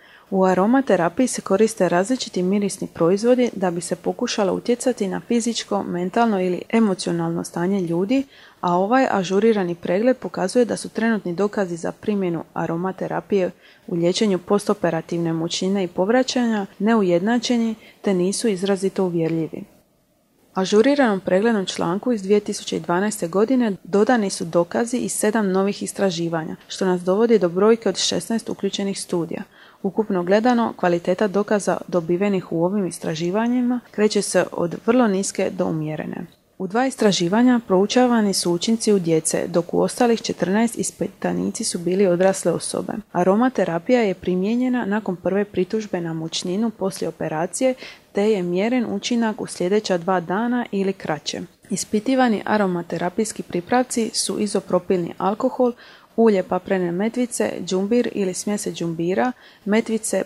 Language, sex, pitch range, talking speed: Croatian, female, 180-225 Hz, 130 wpm